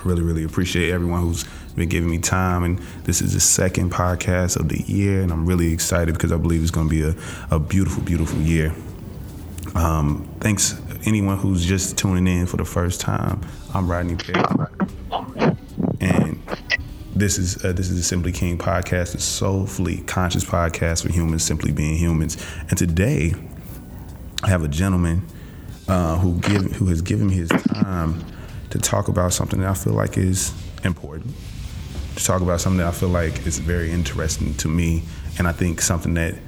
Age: 20-39